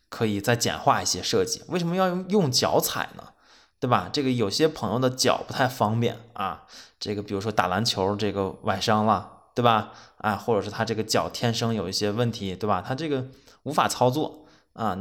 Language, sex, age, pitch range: Chinese, male, 20-39, 105-140 Hz